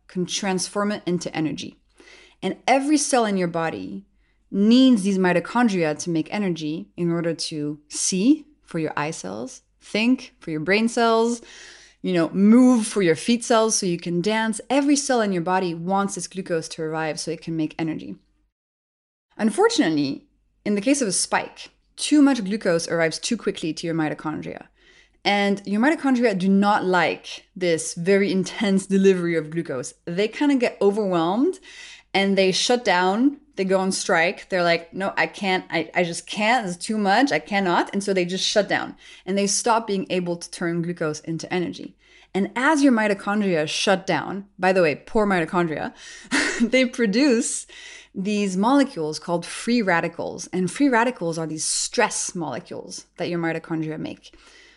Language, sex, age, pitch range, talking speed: English, female, 20-39, 170-235 Hz, 170 wpm